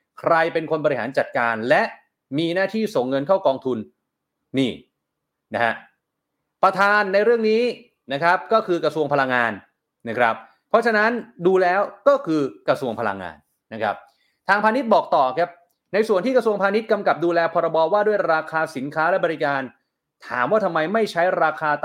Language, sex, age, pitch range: Thai, male, 30-49, 150-205 Hz